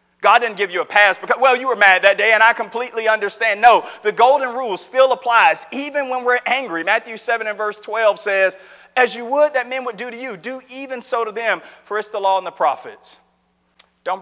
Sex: male